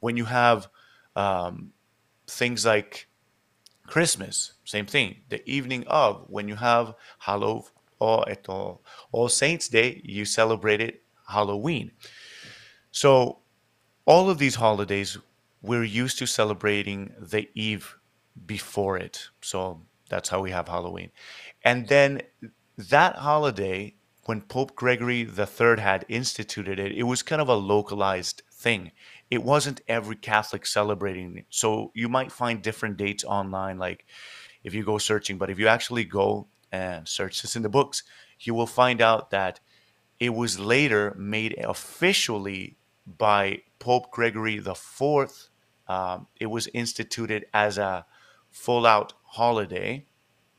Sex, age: male, 30-49